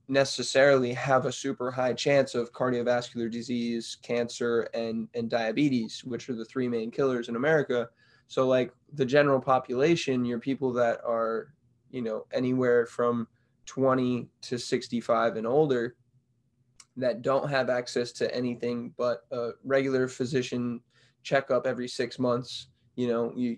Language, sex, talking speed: English, male, 145 wpm